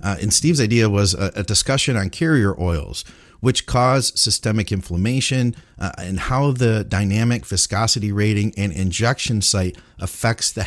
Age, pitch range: 40-59, 95-125 Hz